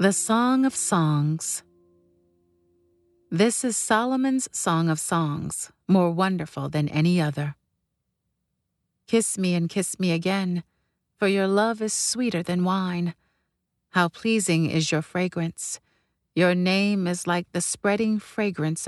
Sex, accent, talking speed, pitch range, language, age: female, American, 125 wpm, 160-205 Hz, English, 40-59